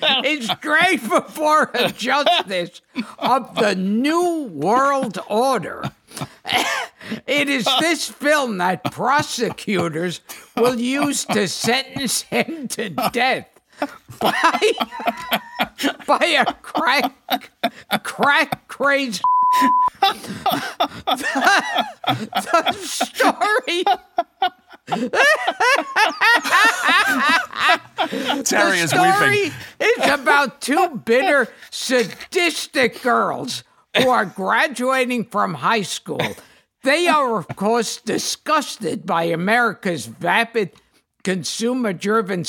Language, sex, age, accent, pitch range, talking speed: English, male, 50-69, American, 195-295 Hz, 80 wpm